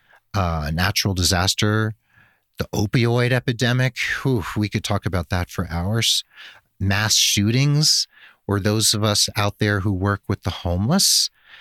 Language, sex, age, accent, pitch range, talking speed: English, male, 40-59, American, 95-120 Hz, 135 wpm